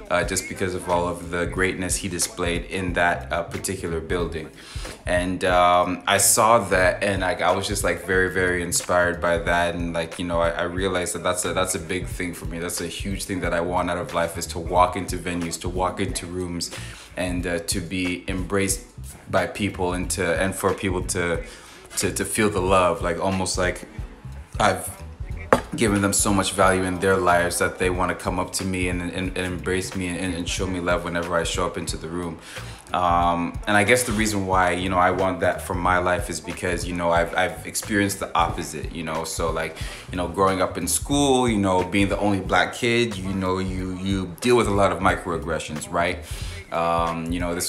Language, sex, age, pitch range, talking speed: English, male, 20-39, 85-100 Hz, 225 wpm